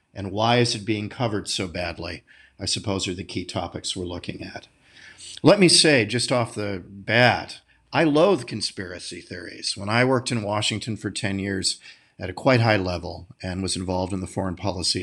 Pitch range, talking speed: 105-130 Hz, 190 wpm